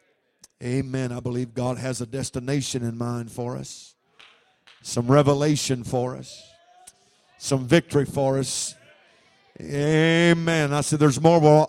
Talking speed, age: 130 wpm, 50-69